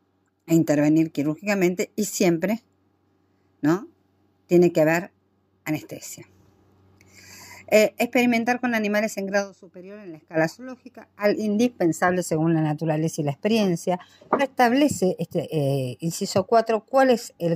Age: 50-69